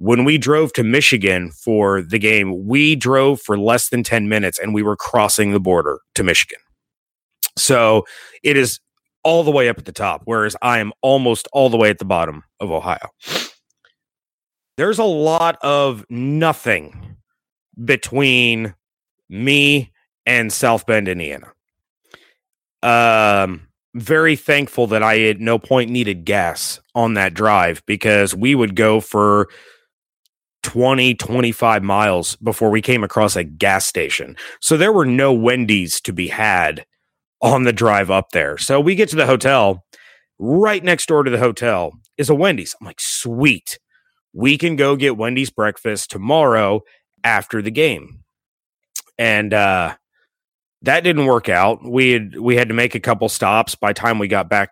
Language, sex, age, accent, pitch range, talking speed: English, male, 30-49, American, 105-135 Hz, 160 wpm